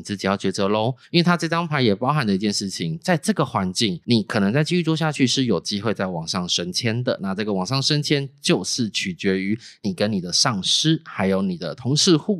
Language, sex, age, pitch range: Chinese, male, 20-39, 100-165 Hz